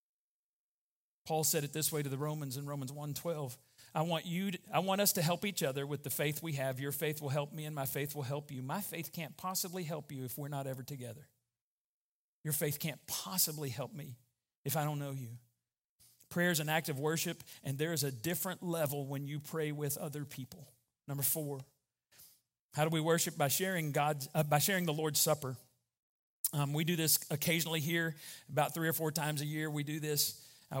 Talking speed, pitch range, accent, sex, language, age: 210 wpm, 140-165 Hz, American, male, English, 40-59